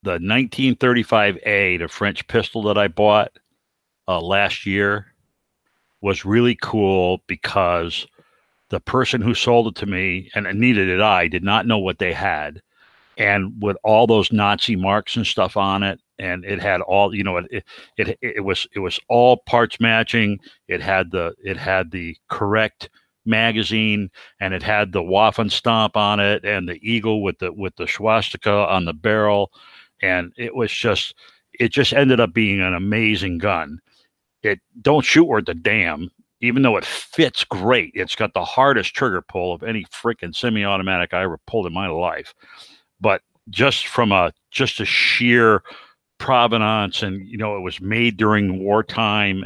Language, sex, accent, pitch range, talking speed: English, male, American, 95-115 Hz, 170 wpm